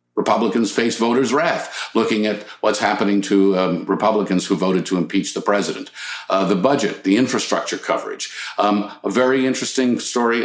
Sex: male